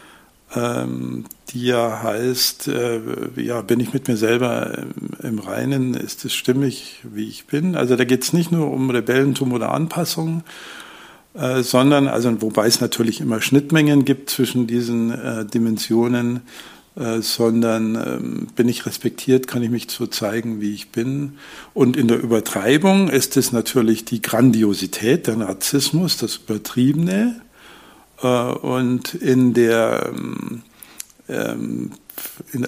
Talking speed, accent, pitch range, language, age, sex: 135 wpm, German, 115-140 Hz, German, 50-69, male